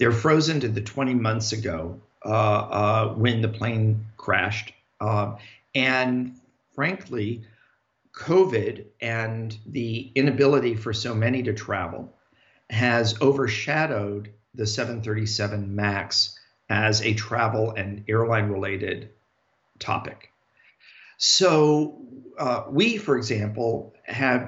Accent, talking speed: American, 105 wpm